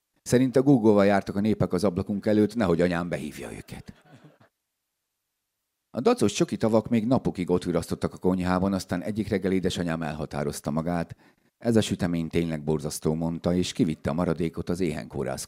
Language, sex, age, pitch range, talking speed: Hungarian, male, 50-69, 75-95 Hz, 160 wpm